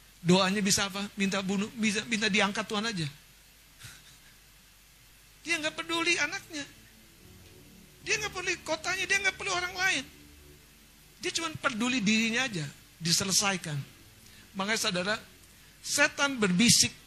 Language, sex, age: Indonesian, male, 50-69